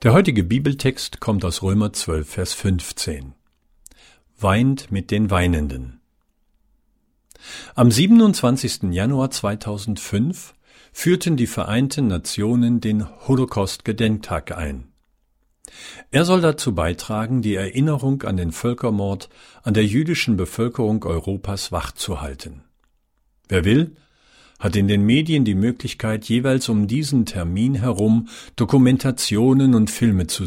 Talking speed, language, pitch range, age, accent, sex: 110 wpm, German, 95-130 Hz, 50-69, German, male